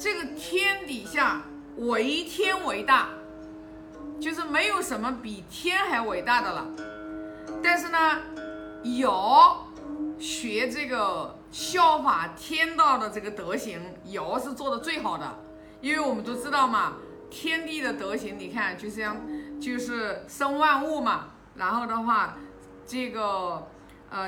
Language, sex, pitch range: Chinese, female, 205-295 Hz